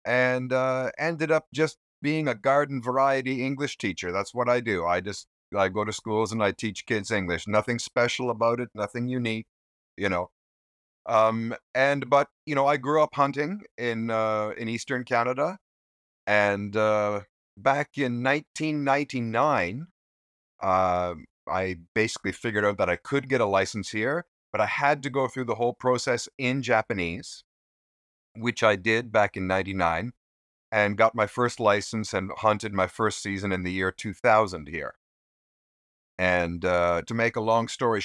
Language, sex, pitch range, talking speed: English, male, 100-130 Hz, 165 wpm